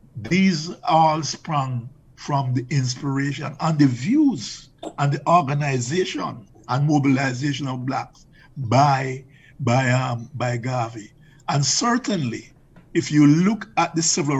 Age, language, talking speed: 50-69, English, 120 wpm